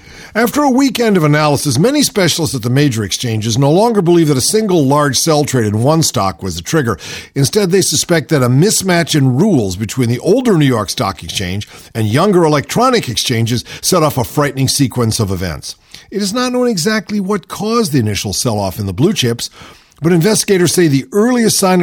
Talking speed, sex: 200 wpm, male